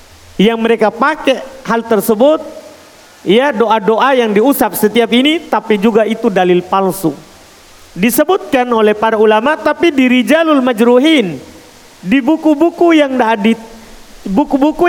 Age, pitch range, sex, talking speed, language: 40-59, 195-260 Hz, male, 115 wpm, Indonesian